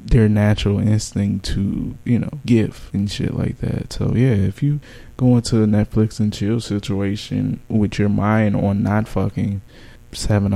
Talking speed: 165 wpm